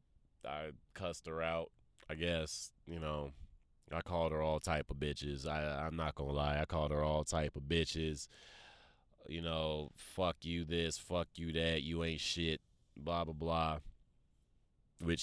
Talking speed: 170 wpm